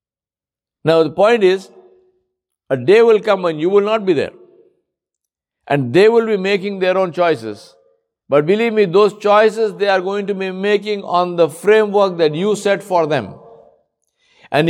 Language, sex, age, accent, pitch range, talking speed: English, male, 60-79, Indian, 140-200 Hz, 170 wpm